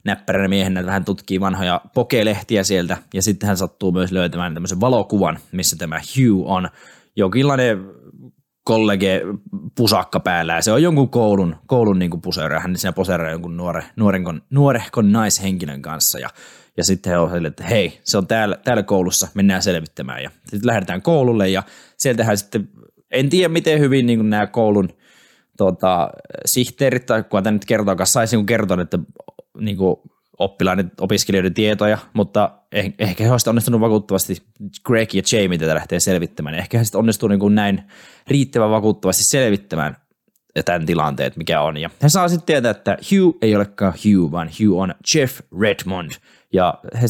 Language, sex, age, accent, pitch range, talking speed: Finnish, male, 20-39, native, 95-115 Hz, 155 wpm